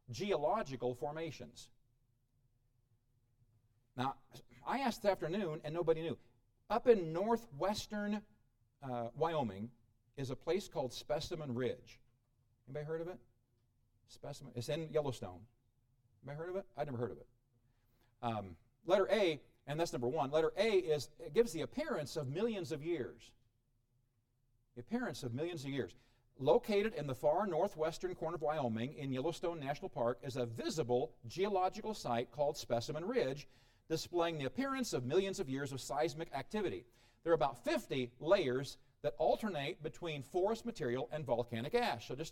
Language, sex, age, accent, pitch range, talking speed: English, male, 50-69, American, 120-165 Hz, 150 wpm